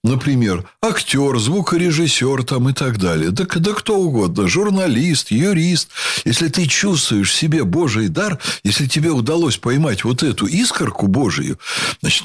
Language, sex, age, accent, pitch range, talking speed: Russian, male, 60-79, native, 110-165 Hz, 145 wpm